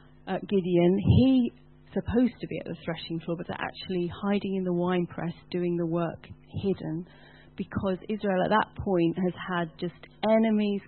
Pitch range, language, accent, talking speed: 175-215 Hz, English, British, 165 wpm